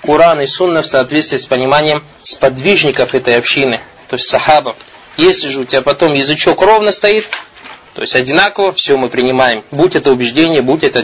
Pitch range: 135-180 Hz